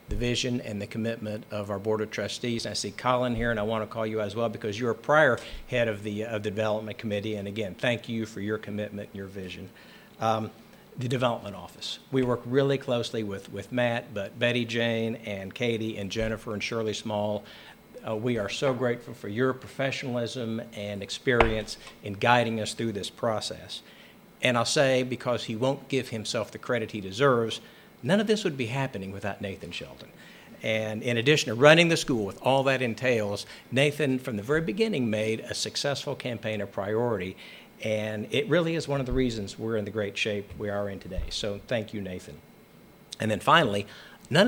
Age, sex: 60-79, male